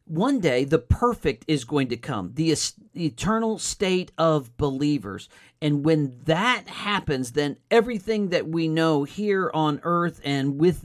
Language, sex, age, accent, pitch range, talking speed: English, male, 50-69, American, 125-160 Hz, 155 wpm